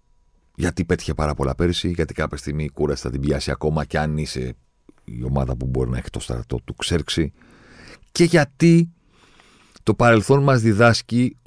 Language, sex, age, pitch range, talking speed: Greek, male, 40-59, 75-110 Hz, 175 wpm